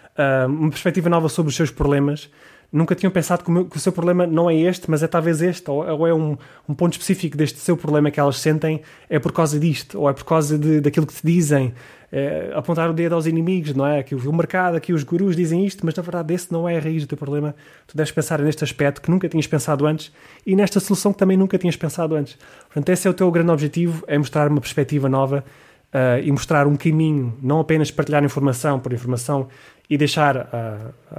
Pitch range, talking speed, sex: 145-170 Hz, 225 wpm, male